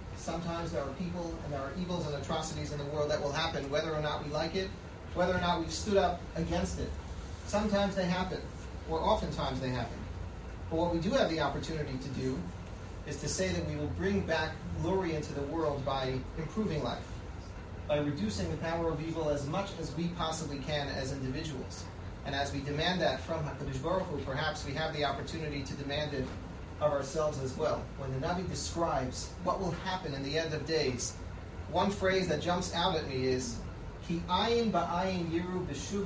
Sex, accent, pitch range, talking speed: male, American, 105-170 Hz, 200 wpm